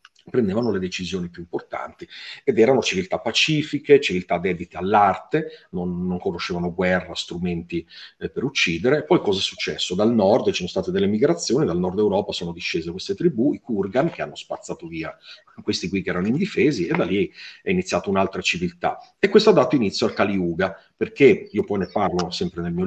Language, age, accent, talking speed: Italian, 40-59, native, 190 wpm